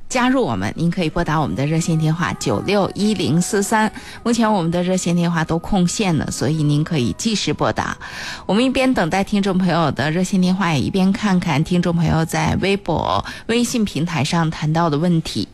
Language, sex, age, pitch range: Chinese, female, 20-39, 160-215 Hz